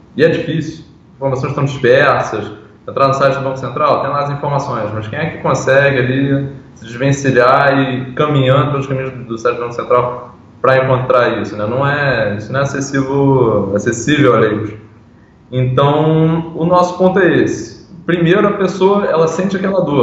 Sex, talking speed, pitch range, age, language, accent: male, 180 wpm, 130-170 Hz, 10-29, Portuguese, Brazilian